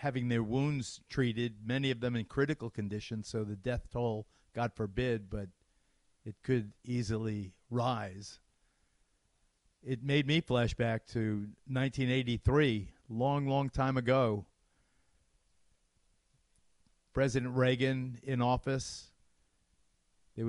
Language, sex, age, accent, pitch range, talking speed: English, male, 50-69, American, 105-125 Hz, 105 wpm